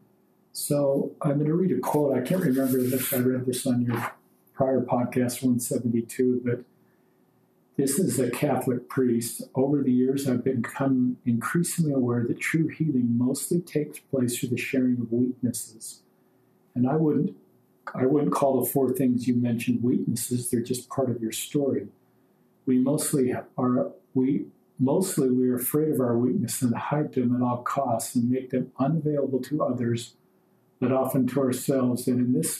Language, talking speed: English, 170 wpm